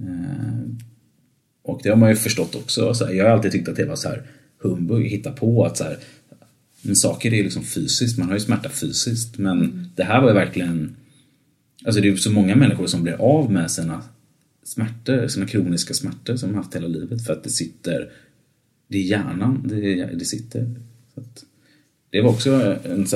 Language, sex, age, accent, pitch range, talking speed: English, male, 30-49, Swedish, 95-130 Hz, 190 wpm